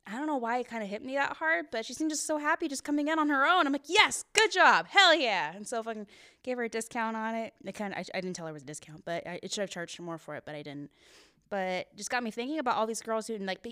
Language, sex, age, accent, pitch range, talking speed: English, female, 10-29, American, 175-230 Hz, 335 wpm